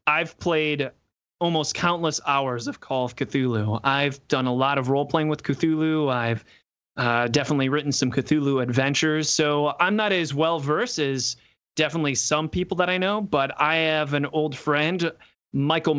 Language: English